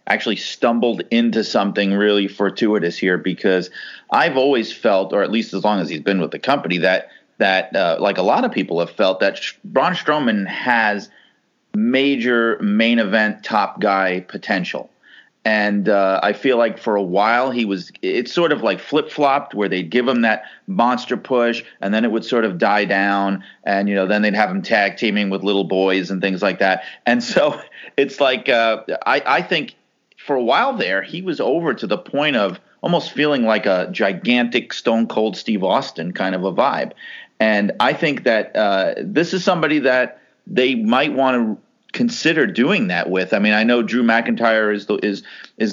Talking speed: 190 wpm